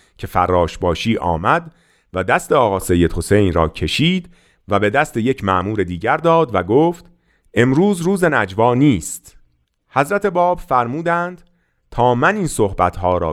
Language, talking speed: Persian, 140 wpm